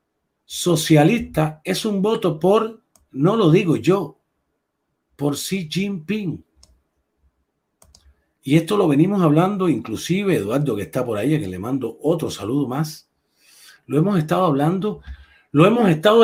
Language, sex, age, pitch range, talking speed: Spanish, male, 50-69, 150-200 Hz, 135 wpm